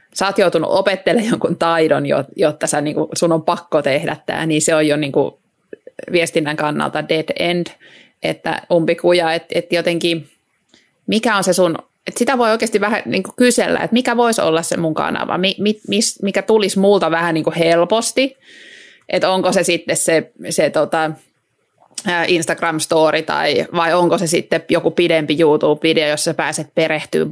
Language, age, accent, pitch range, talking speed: Finnish, 30-49, native, 165-205 Hz, 160 wpm